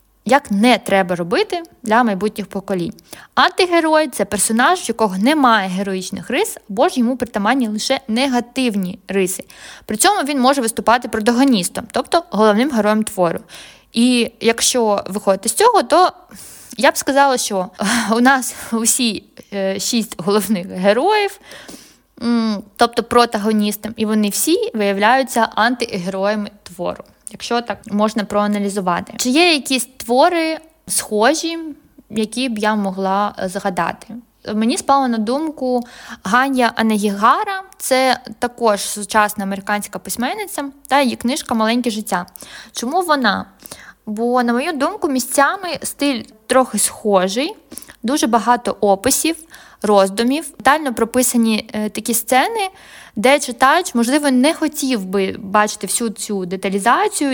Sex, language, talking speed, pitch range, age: female, Ukrainian, 120 wpm, 210-275 Hz, 20-39